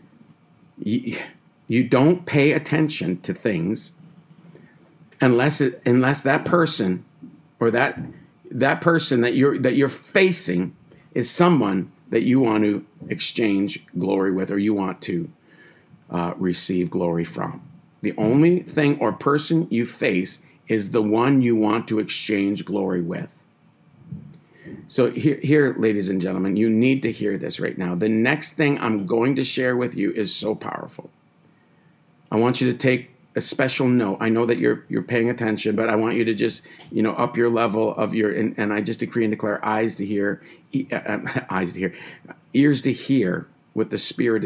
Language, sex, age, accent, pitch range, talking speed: English, male, 50-69, American, 105-145 Hz, 175 wpm